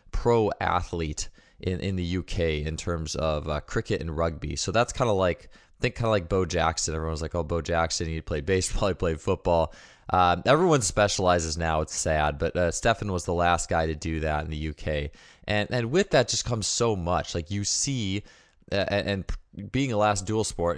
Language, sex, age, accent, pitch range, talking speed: English, male, 20-39, American, 80-100 Hz, 210 wpm